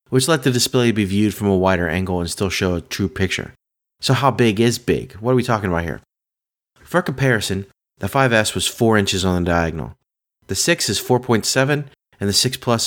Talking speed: 210 wpm